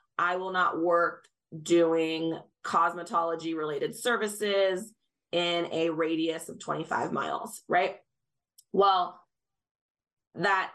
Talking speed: 90 wpm